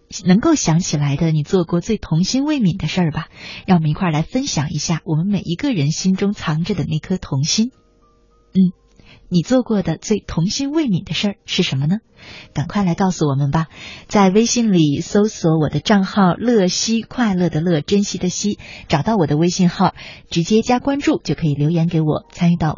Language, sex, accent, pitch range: Chinese, female, native, 155-210 Hz